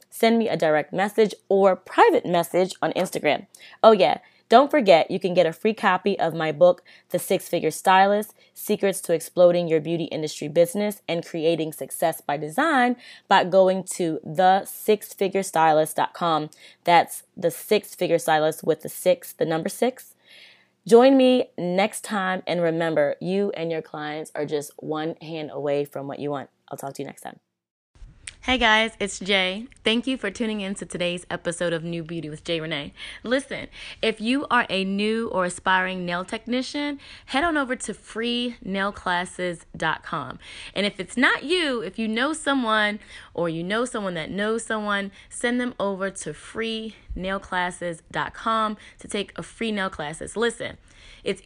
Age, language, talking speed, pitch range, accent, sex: 20-39, English, 165 wpm, 170-220 Hz, American, female